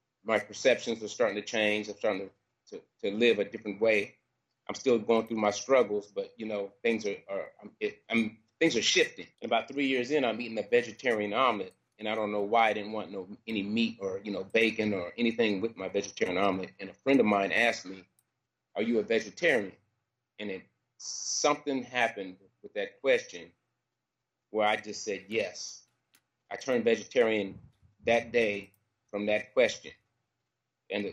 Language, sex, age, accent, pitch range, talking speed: English, male, 30-49, American, 105-145 Hz, 185 wpm